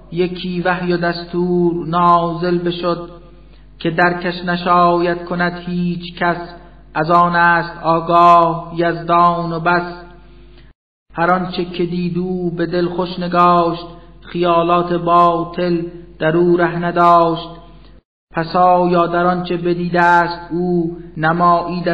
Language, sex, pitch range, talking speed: Persian, male, 170-175 Hz, 110 wpm